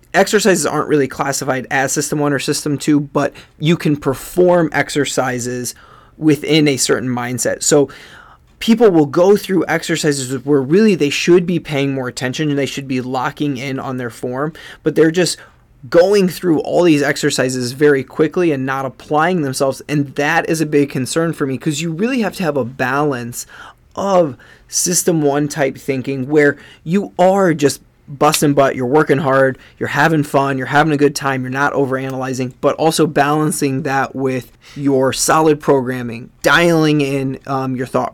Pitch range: 130-155 Hz